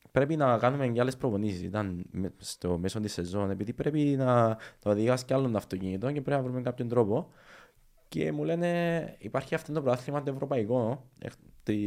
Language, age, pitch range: Greek, 20-39, 100-130 Hz